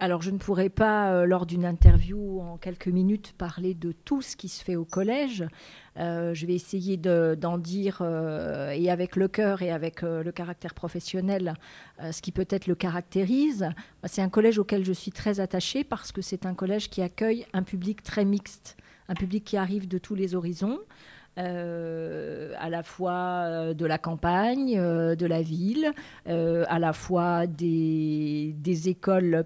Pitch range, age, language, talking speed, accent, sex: 170-200 Hz, 40-59, French, 180 wpm, French, female